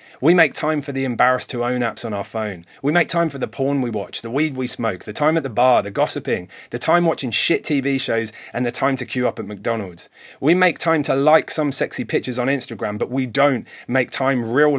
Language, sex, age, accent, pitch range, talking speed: English, male, 30-49, British, 120-150 Hz, 250 wpm